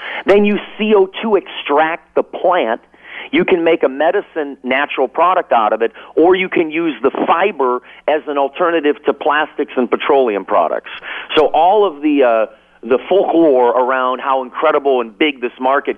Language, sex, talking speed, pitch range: English, male, 165 wpm, 125-185 Hz